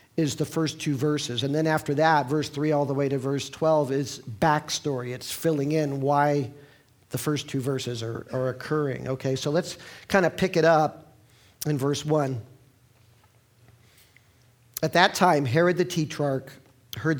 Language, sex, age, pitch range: English, male, 50-69, 125-155 Hz